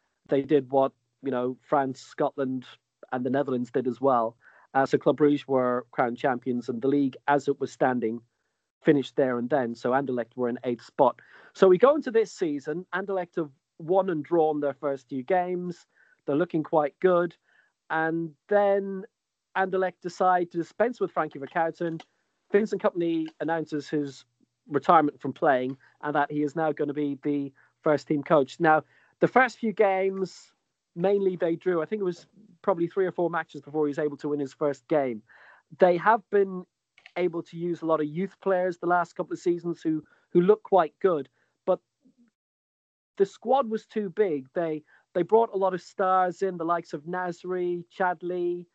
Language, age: English, 40-59